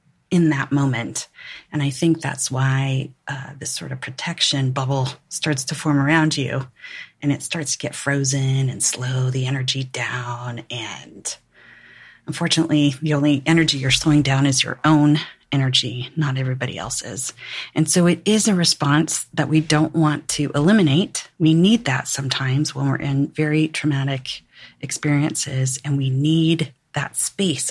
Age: 40-59